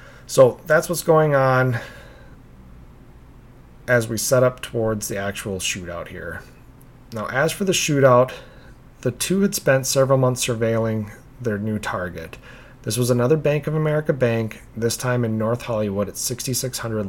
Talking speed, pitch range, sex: 150 wpm, 110-135 Hz, male